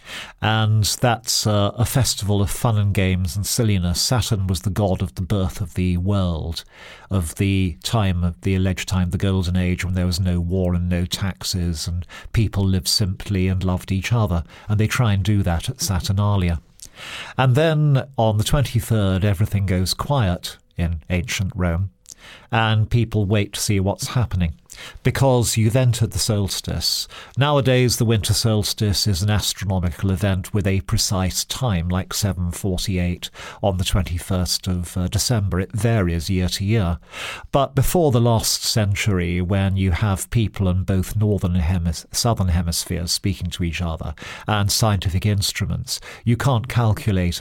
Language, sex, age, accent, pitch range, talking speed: English, male, 50-69, British, 90-110 Hz, 160 wpm